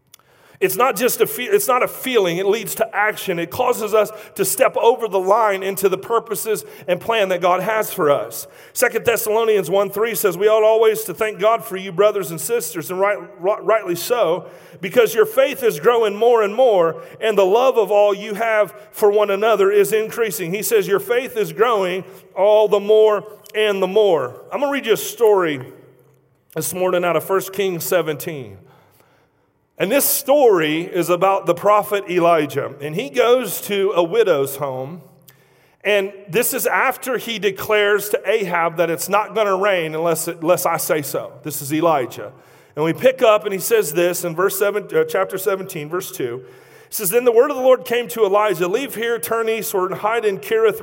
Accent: American